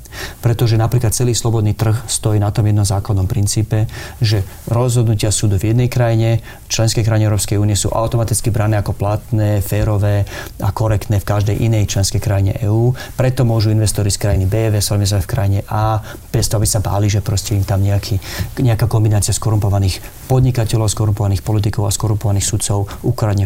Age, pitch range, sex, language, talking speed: 30-49, 105-115 Hz, male, Slovak, 165 wpm